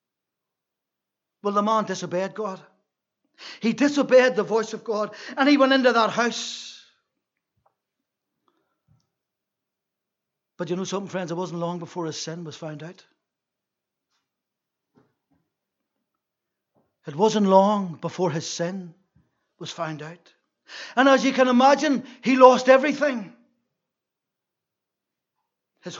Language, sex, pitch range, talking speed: English, male, 200-270 Hz, 115 wpm